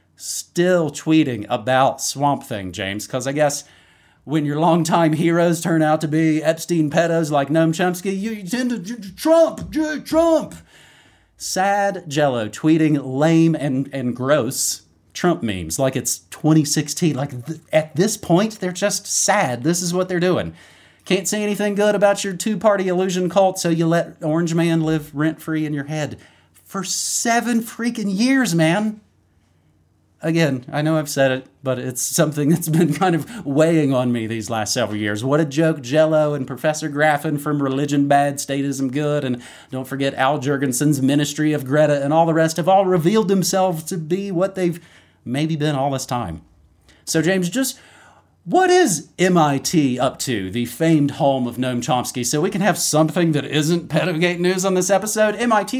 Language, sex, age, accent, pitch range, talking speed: English, male, 30-49, American, 135-180 Hz, 175 wpm